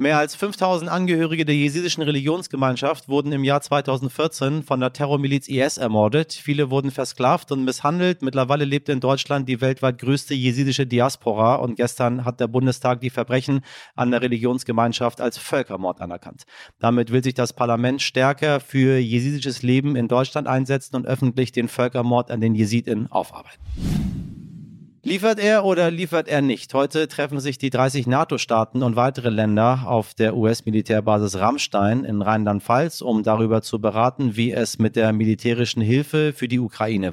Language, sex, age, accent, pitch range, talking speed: German, male, 40-59, German, 115-145 Hz, 155 wpm